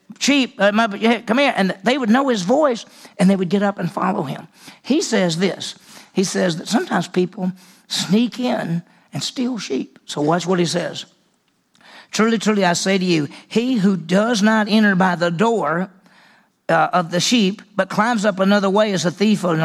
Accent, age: American, 50-69